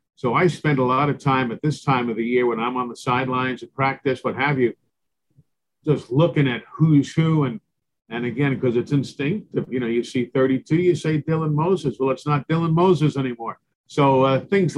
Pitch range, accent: 120-145 Hz, American